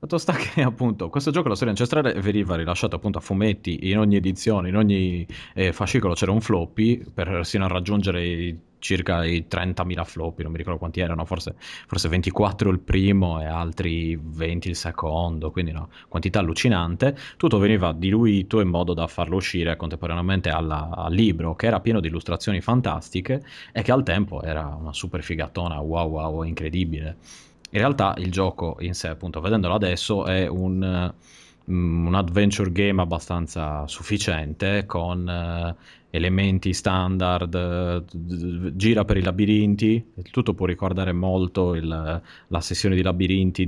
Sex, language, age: male, Italian, 30-49